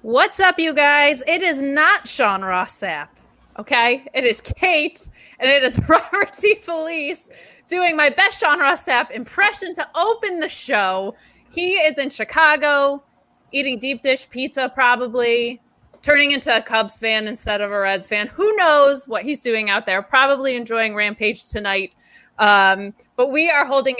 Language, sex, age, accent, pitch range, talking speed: English, female, 20-39, American, 240-335 Hz, 165 wpm